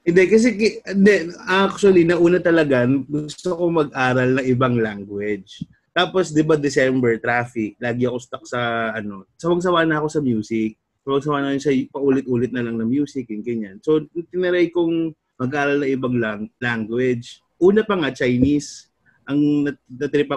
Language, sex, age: Filipino, male, 20-39